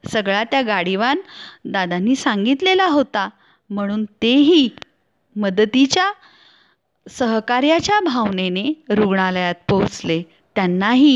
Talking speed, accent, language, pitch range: 75 wpm, native, Marathi, 205-275 Hz